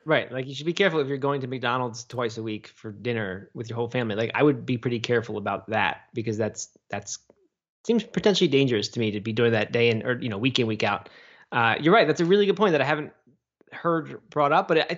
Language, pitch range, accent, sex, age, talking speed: English, 120-165 Hz, American, male, 20-39, 255 wpm